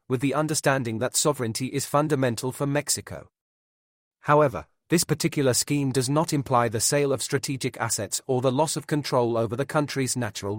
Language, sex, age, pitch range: English, male, 40-59, 120-145 Hz